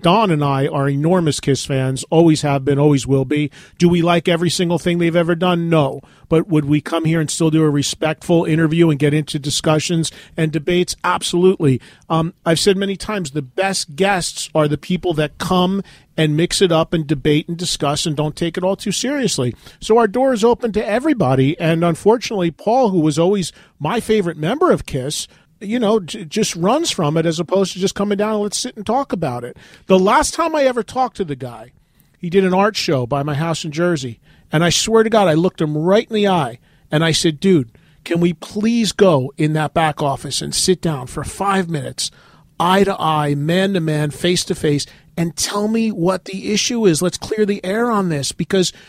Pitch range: 150-195 Hz